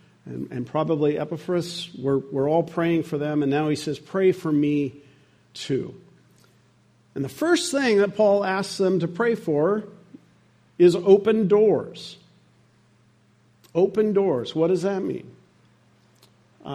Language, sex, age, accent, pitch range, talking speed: English, male, 50-69, American, 145-190 Hz, 135 wpm